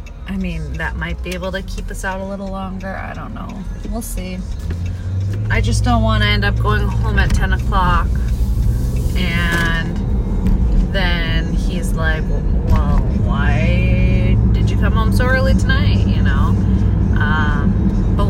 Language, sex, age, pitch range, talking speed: English, female, 30-49, 95-100 Hz, 155 wpm